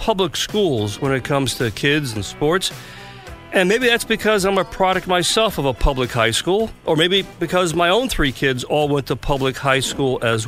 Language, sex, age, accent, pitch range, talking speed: English, male, 50-69, American, 130-190 Hz, 205 wpm